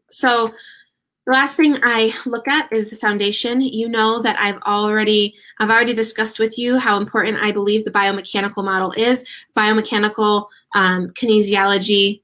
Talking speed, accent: 145 wpm, American